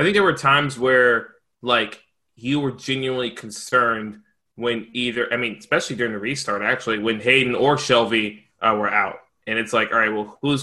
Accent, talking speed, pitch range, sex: American, 200 wpm, 115-130 Hz, male